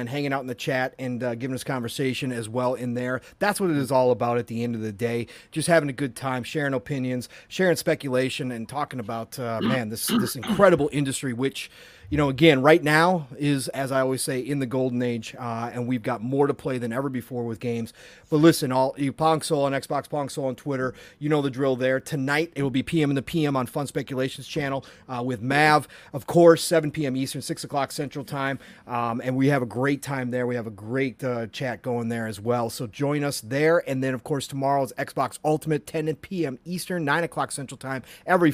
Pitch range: 125-150 Hz